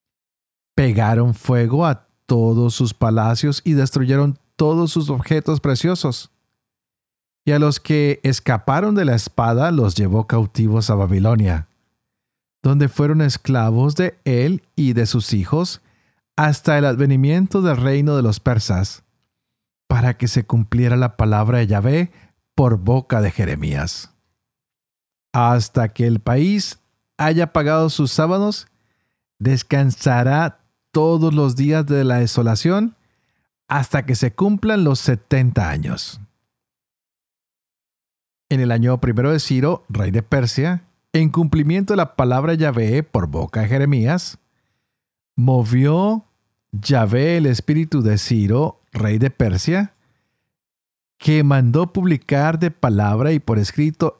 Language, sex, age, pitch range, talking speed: Spanish, male, 40-59, 115-155 Hz, 125 wpm